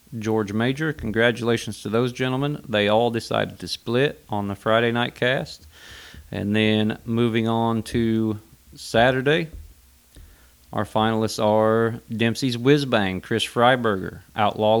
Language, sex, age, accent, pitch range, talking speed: English, male, 30-49, American, 105-125 Hz, 125 wpm